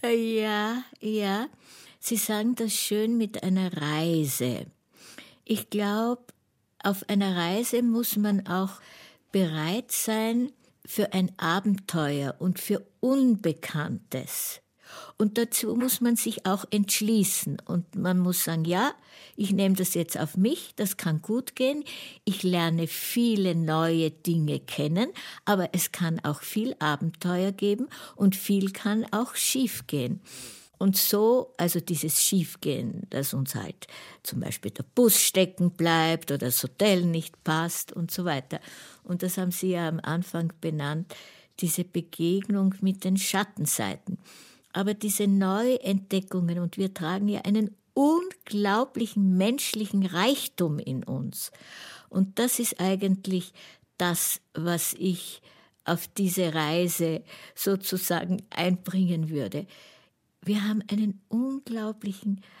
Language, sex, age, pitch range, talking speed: German, female, 60-79, 170-215 Hz, 125 wpm